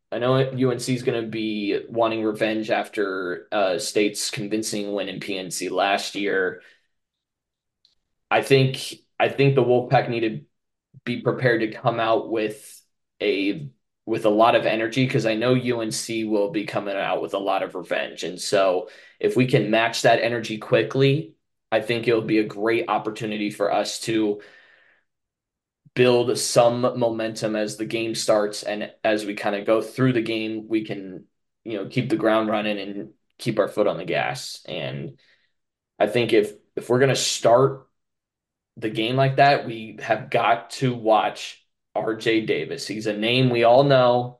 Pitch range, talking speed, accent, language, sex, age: 110-125 Hz, 170 wpm, American, English, male, 20-39